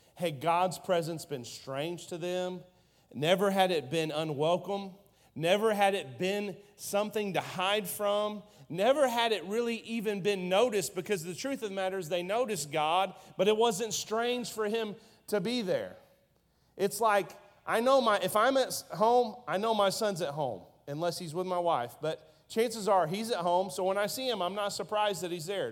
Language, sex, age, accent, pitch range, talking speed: English, male, 40-59, American, 175-210 Hz, 195 wpm